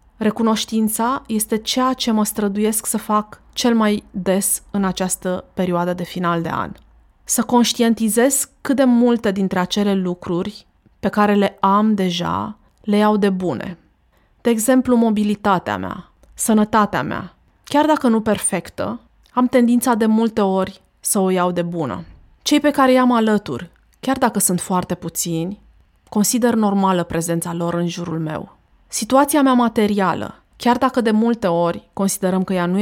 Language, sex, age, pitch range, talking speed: Romanian, female, 20-39, 180-220 Hz, 155 wpm